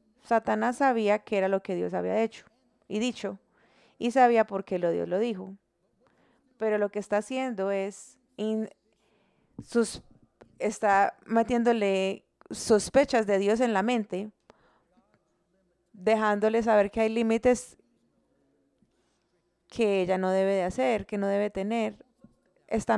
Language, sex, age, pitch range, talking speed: English, female, 30-49, 200-235 Hz, 125 wpm